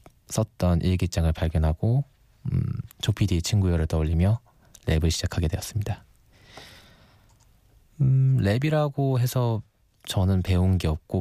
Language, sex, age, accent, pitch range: Korean, male, 20-39, native, 85-110 Hz